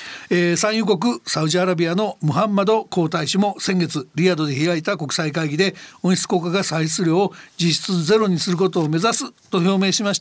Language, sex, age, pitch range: Japanese, male, 60-79, 155-205 Hz